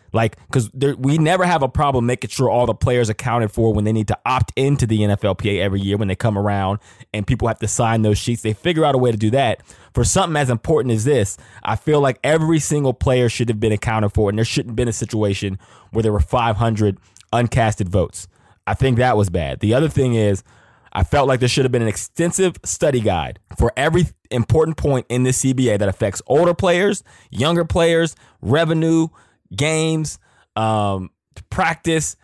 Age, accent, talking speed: 20-39, American, 205 wpm